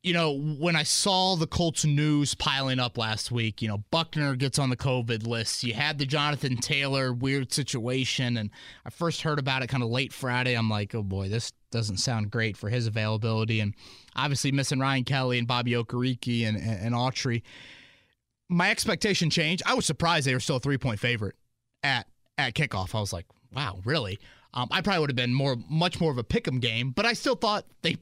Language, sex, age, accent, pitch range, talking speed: English, male, 20-39, American, 120-160 Hz, 215 wpm